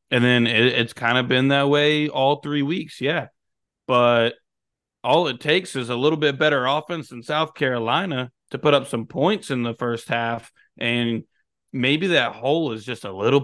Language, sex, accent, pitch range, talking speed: English, male, American, 115-135 Hz, 190 wpm